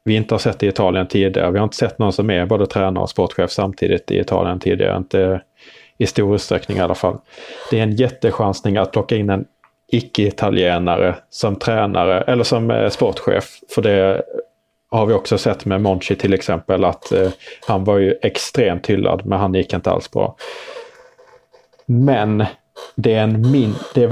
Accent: Norwegian